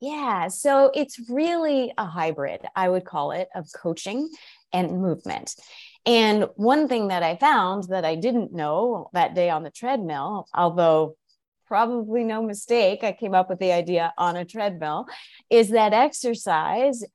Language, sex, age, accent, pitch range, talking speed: English, female, 30-49, American, 165-225 Hz, 155 wpm